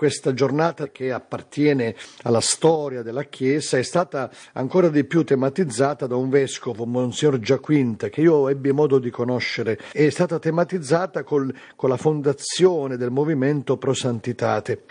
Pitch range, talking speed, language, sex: 130-155 Hz, 140 wpm, Italian, male